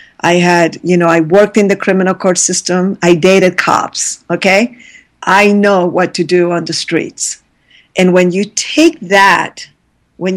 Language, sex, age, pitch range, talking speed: English, female, 50-69, 170-215 Hz, 170 wpm